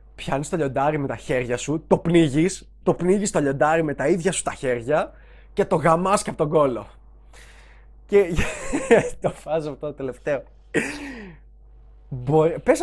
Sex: male